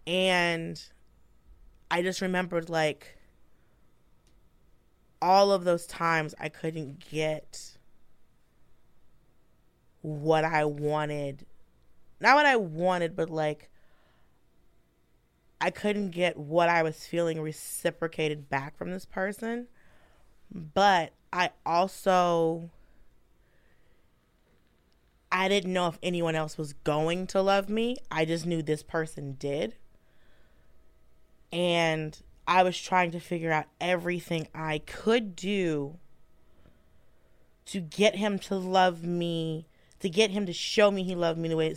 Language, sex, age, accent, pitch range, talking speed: English, female, 20-39, American, 145-180 Hz, 120 wpm